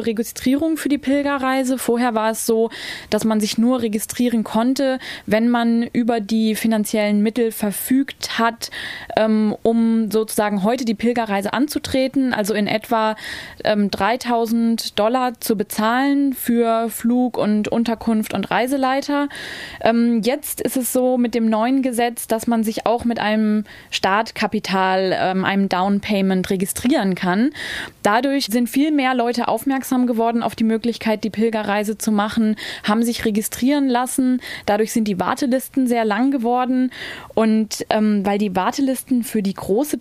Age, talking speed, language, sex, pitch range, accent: 20-39, 145 wpm, German, female, 210-245 Hz, German